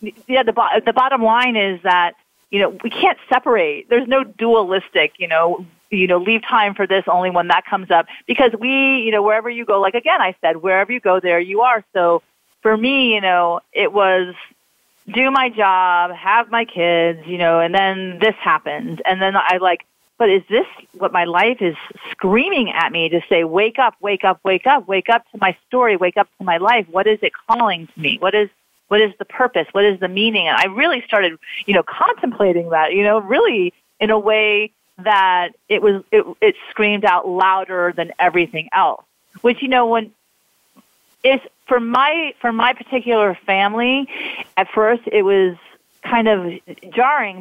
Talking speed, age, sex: 195 wpm, 40-59, female